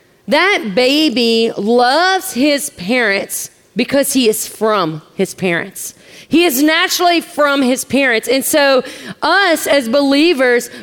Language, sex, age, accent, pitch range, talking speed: English, female, 40-59, American, 230-310 Hz, 120 wpm